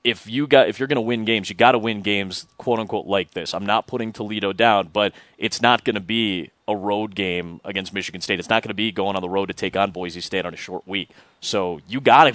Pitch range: 95-115 Hz